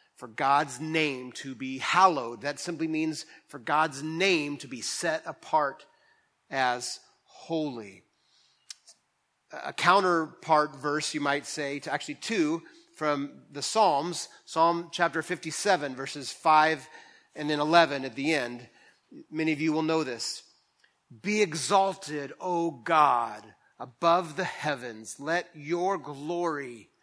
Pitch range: 140-170 Hz